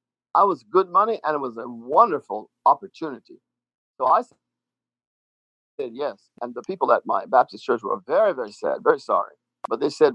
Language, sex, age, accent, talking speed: English, male, 50-69, American, 175 wpm